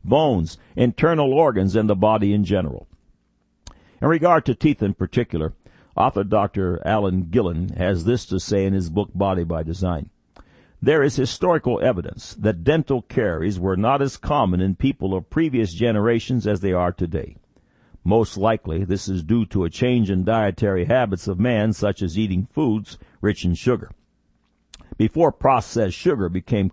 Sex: male